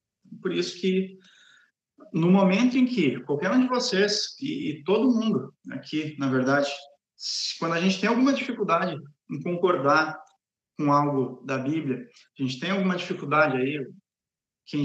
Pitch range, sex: 145-195 Hz, male